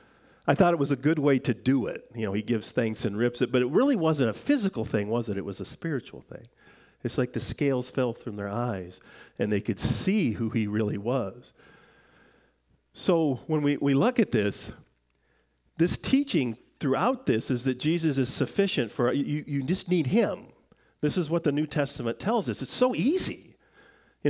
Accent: American